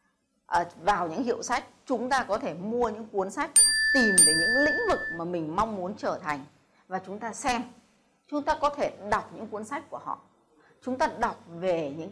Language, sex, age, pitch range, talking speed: Vietnamese, female, 20-39, 200-260 Hz, 210 wpm